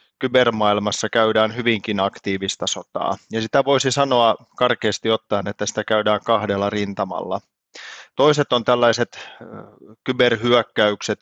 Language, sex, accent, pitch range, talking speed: Finnish, male, native, 105-120 Hz, 105 wpm